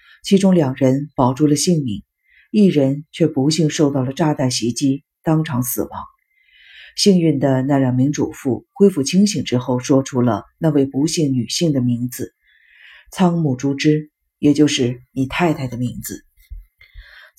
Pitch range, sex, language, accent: 130-180 Hz, female, Chinese, native